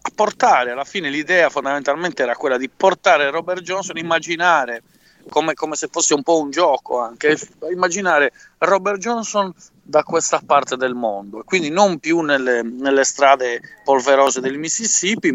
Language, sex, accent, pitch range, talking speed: English, male, Italian, 125-165 Hz, 150 wpm